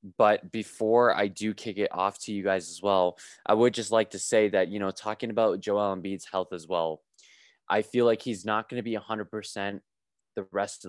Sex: male